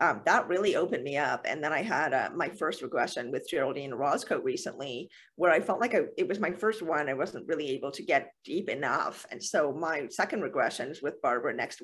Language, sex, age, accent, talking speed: English, female, 40-59, American, 230 wpm